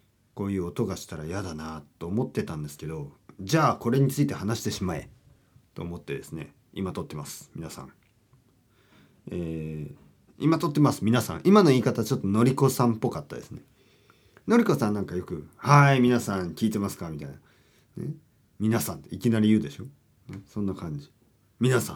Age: 40-59